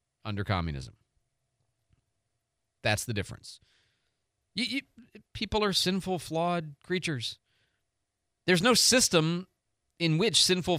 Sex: male